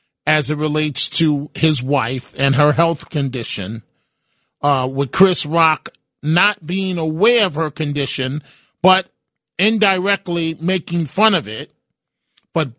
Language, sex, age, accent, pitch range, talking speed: English, male, 40-59, American, 155-195 Hz, 125 wpm